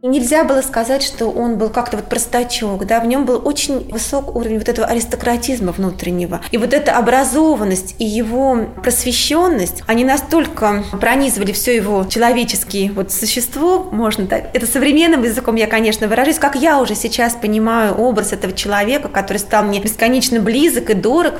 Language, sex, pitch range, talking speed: Russian, female, 215-265 Hz, 165 wpm